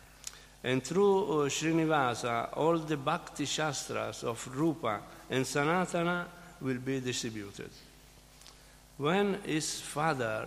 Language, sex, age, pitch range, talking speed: Italian, male, 50-69, 125-155 Hz, 90 wpm